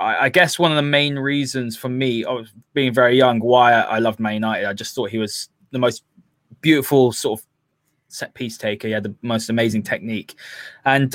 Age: 20-39